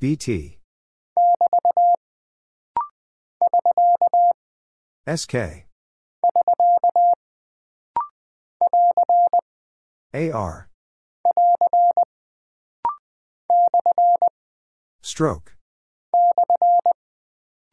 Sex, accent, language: male, American, English